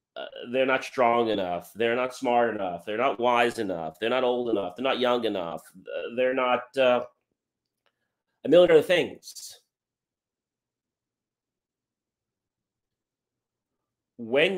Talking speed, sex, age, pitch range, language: 125 wpm, male, 30-49, 100-130 Hz, English